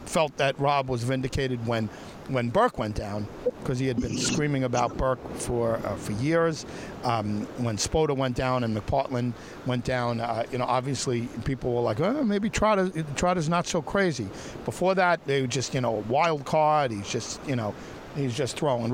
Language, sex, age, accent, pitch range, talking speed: English, male, 50-69, American, 120-165 Hz, 190 wpm